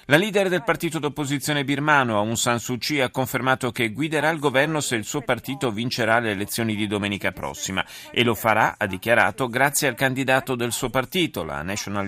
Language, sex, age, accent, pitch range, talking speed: Italian, male, 40-59, native, 110-145 Hz, 195 wpm